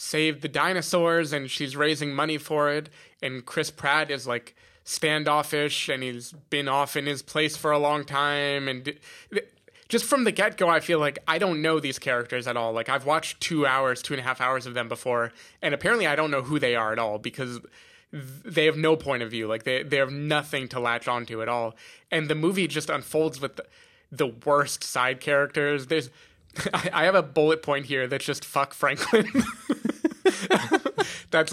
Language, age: English, 20-39